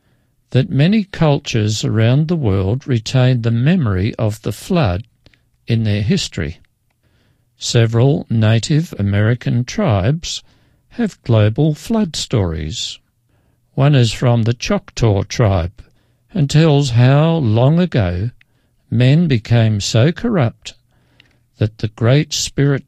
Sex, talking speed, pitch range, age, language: male, 110 wpm, 110-140 Hz, 60-79, English